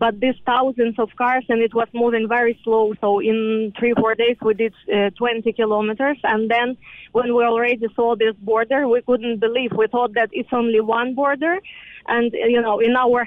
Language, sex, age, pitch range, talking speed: English, female, 20-39, 230-255 Hz, 200 wpm